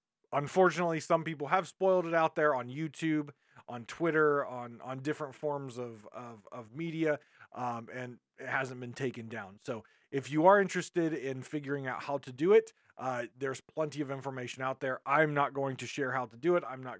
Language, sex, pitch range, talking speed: English, male, 120-150 Hz, 200 wpm